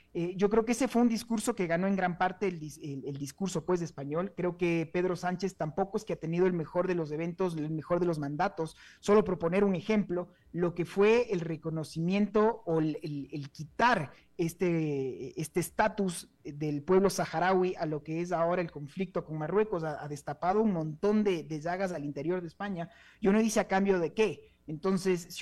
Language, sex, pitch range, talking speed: Spanish, male, 165-205 Hz, 210 wpm